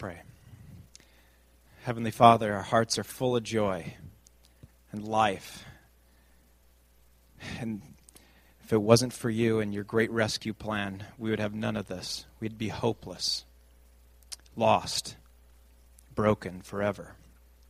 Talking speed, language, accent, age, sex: 115 wpm, English, American, 30-49, male